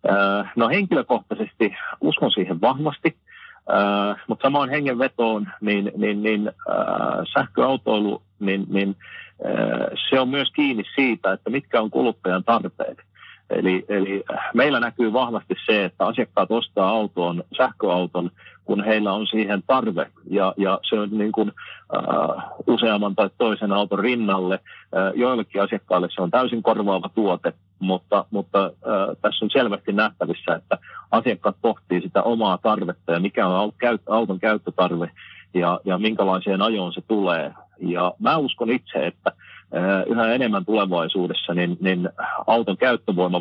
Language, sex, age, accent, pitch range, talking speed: Finnish, male, 40-59, native, 95-110 Hz, 130 wpm